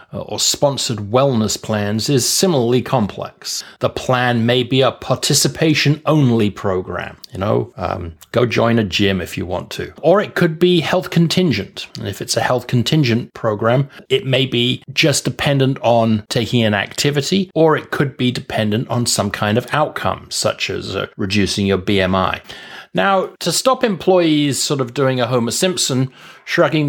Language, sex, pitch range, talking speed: English, male, 110-150 Hz, 165 wpm